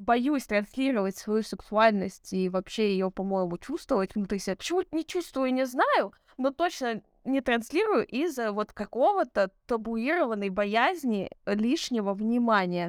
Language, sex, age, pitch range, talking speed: Russian, female, 20-39, 205-260 Hz, 125 wpm